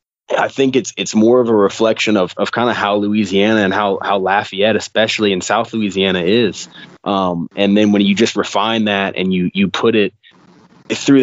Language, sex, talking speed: English, male, 200 wpm